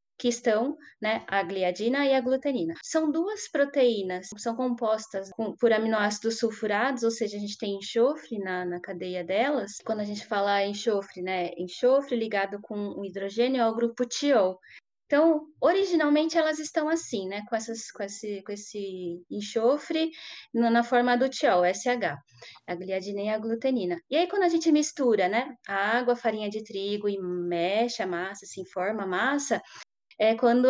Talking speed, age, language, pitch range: 175 wpm, 20-39, Portuguese, 200-260 Hz